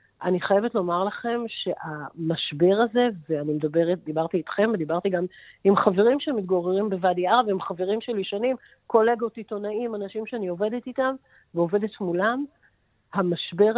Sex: female